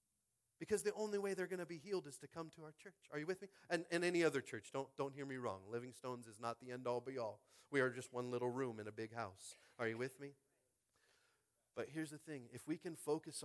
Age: 40-59